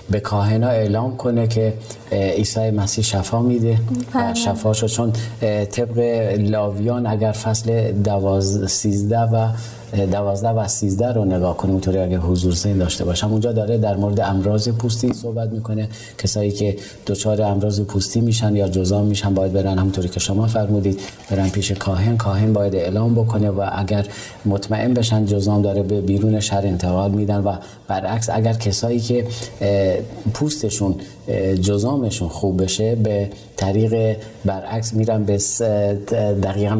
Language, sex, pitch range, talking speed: Persian, male, 100-115 Hz, 145 wpm